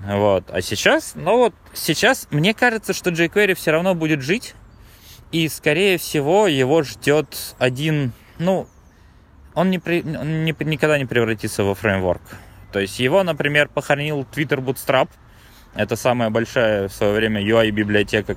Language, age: Russian, 20-39